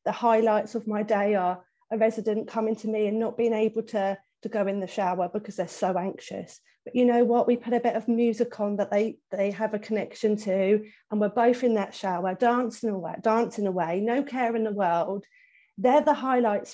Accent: British